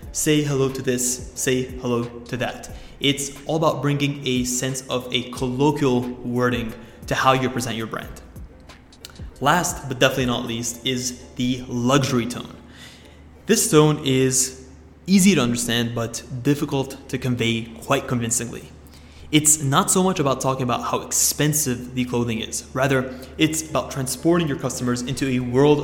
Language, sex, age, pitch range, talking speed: English, male, 20-39, 120-140 Hz, 155 wpm